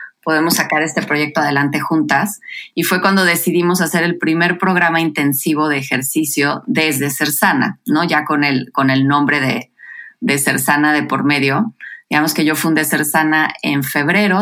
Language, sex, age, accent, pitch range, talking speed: Spanish, female, 30-49, Mexican, 145-180 Hz, 175 wpm